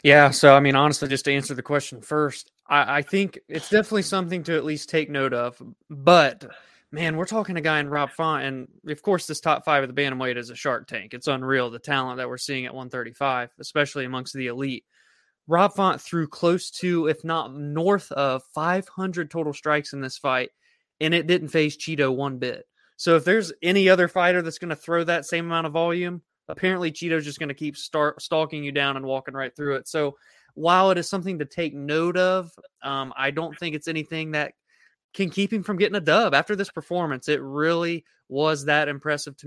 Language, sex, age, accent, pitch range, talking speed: English, male, 20-39, American, 140-175 Hz, 215 wpm